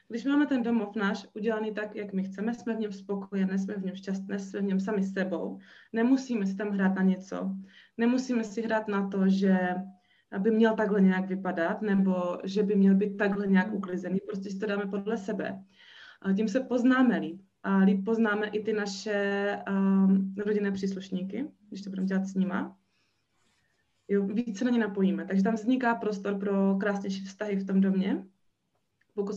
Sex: female